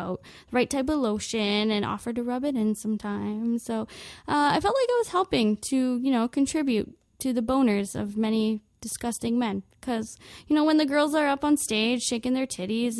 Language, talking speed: English, 205 wpm